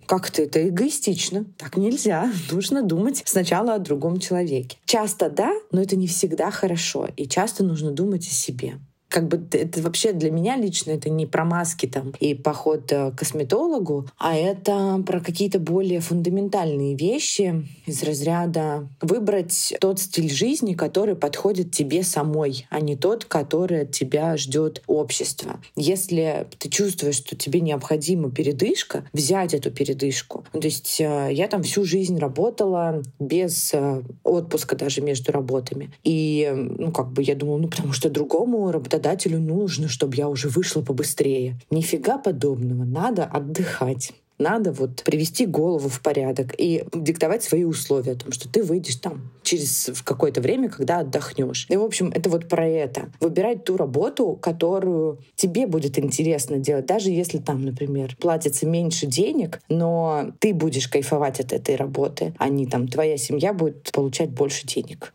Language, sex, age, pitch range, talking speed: Russian, female, 20-39, 145-185 Hz, 155 wpm